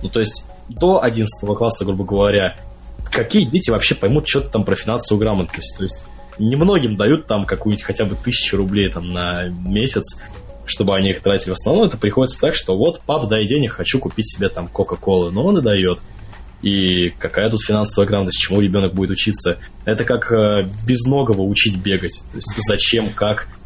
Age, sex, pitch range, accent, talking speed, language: 20-39, male, 95-110 Hz, native, 180 wpm, Russian